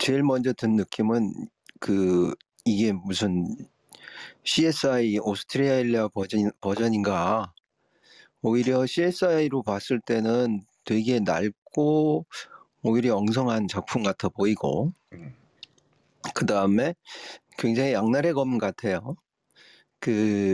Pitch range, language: 110-145 Hz, Korean